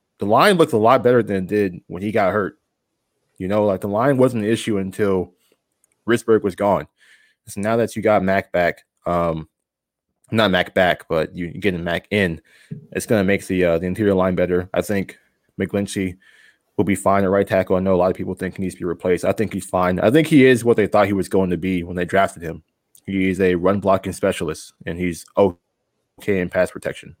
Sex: male